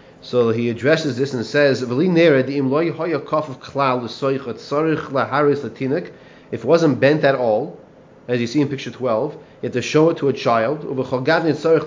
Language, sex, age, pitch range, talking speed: English, male, 30-49, 130-150 Hz, 105 wpm